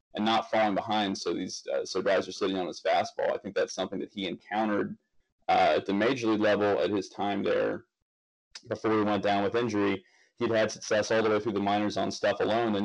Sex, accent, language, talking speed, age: male, American, English, 230 wpm, 30-49